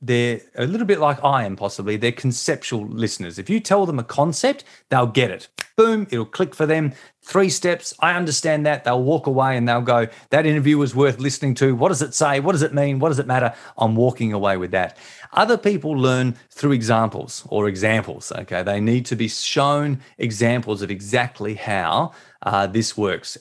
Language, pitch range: English, 110-145 Hz